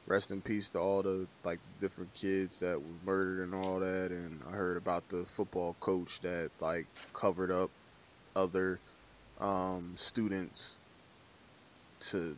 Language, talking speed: English, 145 wpm